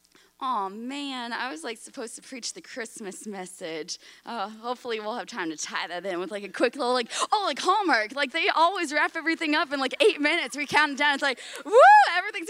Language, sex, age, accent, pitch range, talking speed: English, female, 20-39, American, 175-280 Hz, 225 wpm